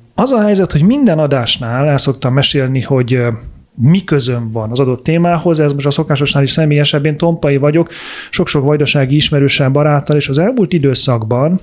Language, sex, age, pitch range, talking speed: Hungarian, male, 30-49, 125-155 Hz, 165 wpm